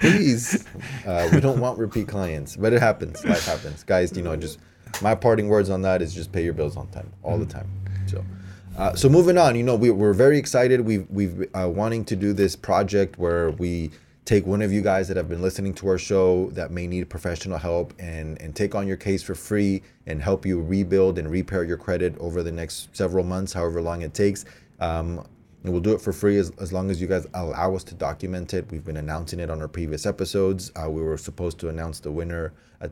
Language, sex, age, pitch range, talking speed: English, male, 20-39, 85-100 Hz, 235 wpm